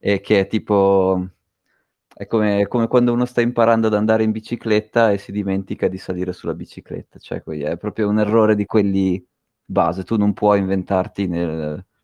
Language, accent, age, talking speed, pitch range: Italian, native, 30-49, 180 wpm, 95-115 Hz